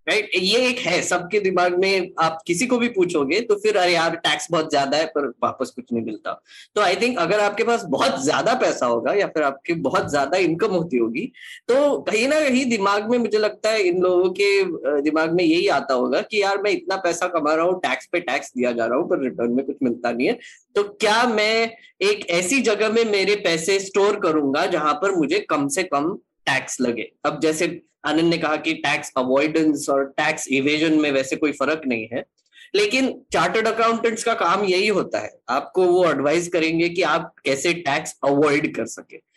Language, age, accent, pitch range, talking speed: Hindi, 10-29, native, 150-215 Hz, 205 wpm